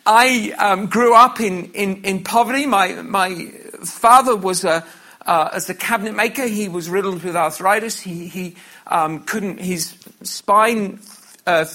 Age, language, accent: 50-69, English, British